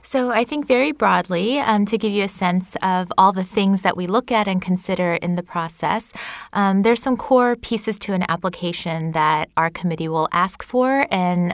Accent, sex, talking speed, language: American, female, 205 wpm, English